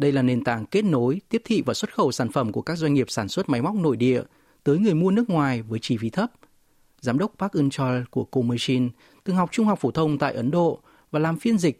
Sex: male